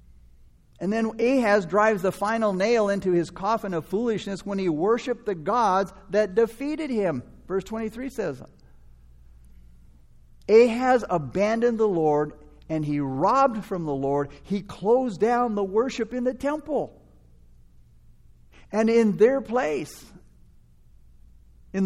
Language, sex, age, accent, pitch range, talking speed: English, male, 50-69, American, 150-230 Hz, 125 wpm